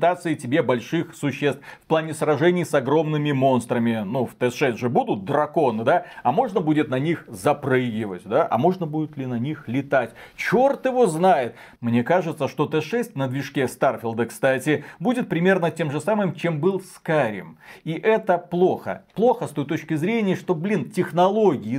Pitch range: 135-180 Hz